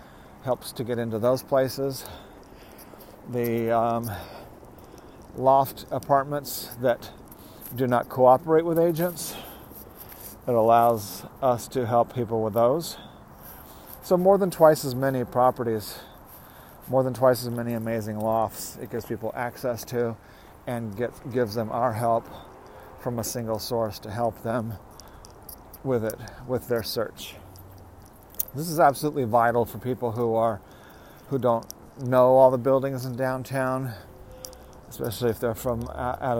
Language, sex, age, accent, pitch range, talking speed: English, male, 40-59, American, 110-130 Hz, 135 wpm